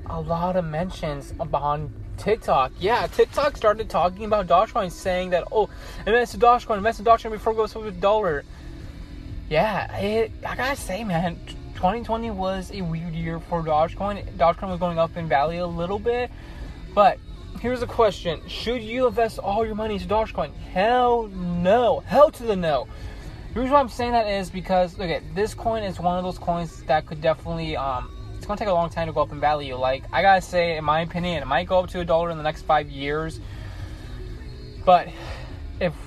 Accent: American